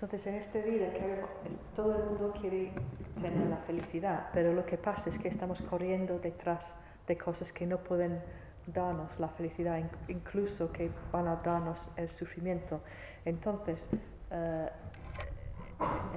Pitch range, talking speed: 165-185 Hz, 140 wpm